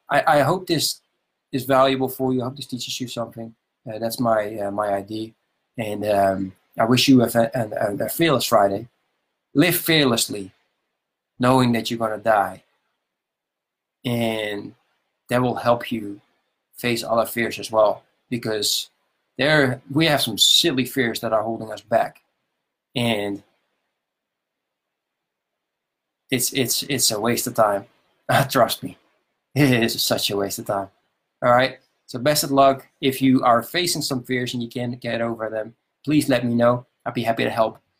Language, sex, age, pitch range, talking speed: English, male, 20-39, 110-135 Hz, 165 wpm